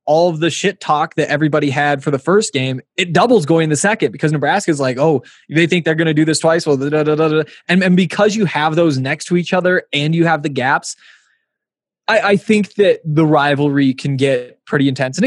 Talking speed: 240 wpm